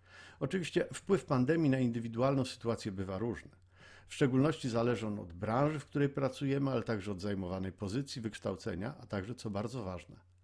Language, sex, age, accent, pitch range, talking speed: Polish, male, 50-69, native, 95-135 Hz, 160 wpm